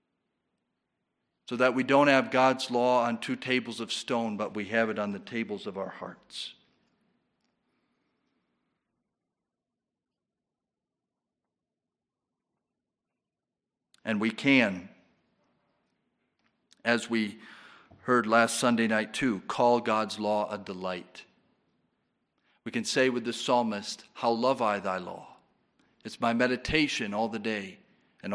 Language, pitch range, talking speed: English, 105-125 Hz, 115 wpm